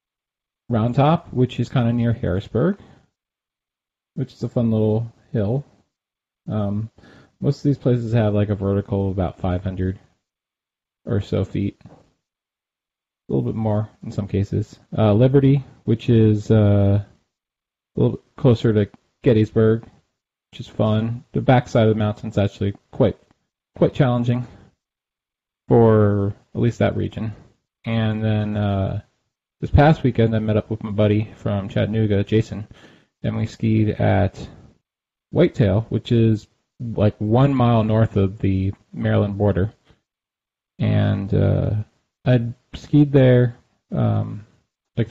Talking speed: 135 wpm